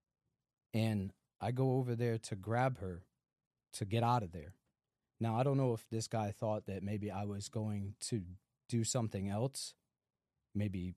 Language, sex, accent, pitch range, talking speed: English, male, American, 100-130 Hz, 170 wpm